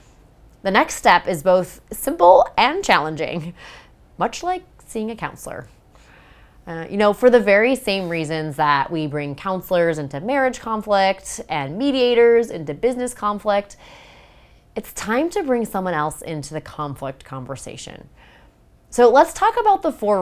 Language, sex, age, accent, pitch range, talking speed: English, female, 30-49, American, 155-225 Hz, 145 wpm